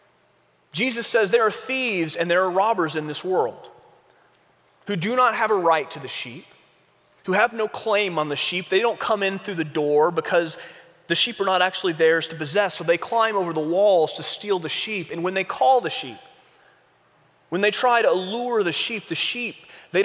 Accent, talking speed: American, 210 wpm